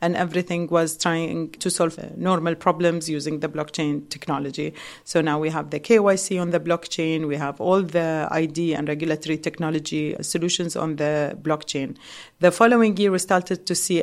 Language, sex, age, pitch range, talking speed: English, female, 40-59, 155-185 Hz, 170 wpm